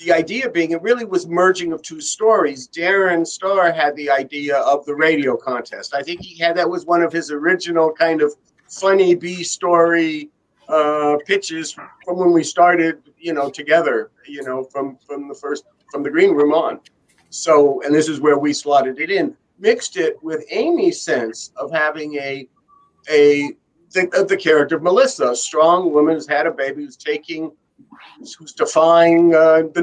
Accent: American